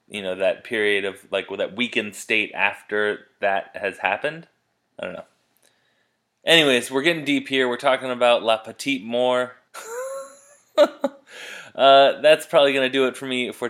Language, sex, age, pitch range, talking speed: English, male, 20-39, 115-155 Hz, 160 wpm